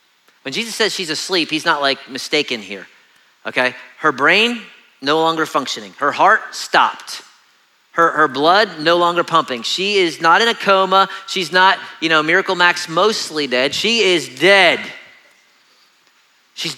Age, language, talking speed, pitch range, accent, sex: 40-59, English, 155 wpm, 130-185 Hz, American, male